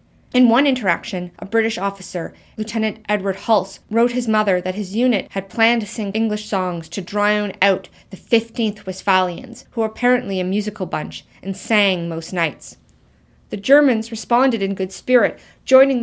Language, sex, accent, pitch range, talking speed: English, female, American, 190-235 Hz, 165 wpm